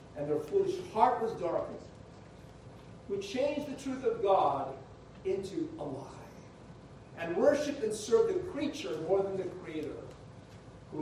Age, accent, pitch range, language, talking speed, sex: 50-69, American, 140-230 Hz, English, 140 wpm, male